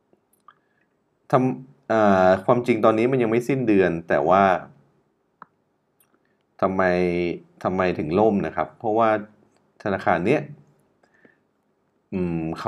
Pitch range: 80-100 Hz